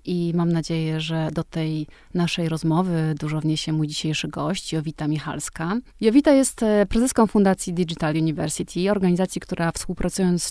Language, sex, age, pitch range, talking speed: Polish, female, 30-49, 155-190 Hz, 145 wpm